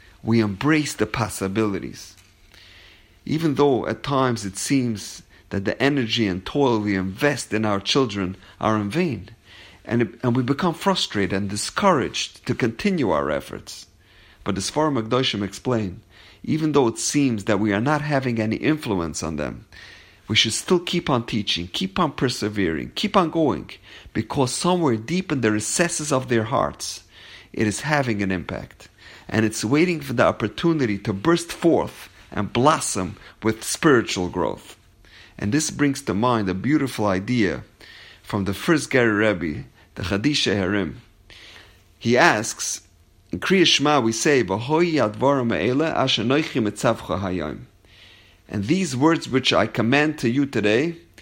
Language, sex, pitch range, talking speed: English, male, 100-140 Hz, 150 wpm